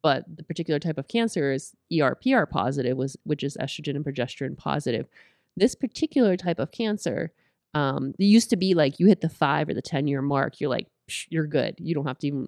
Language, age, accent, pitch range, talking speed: English, 30-49, American, 140-175 Hz, 205 wpm